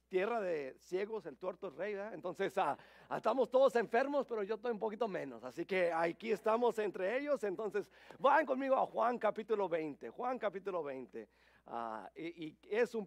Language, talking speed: English, 190 wpm